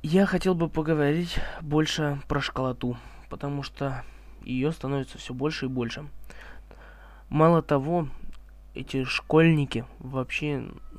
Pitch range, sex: 125-155 Hz, male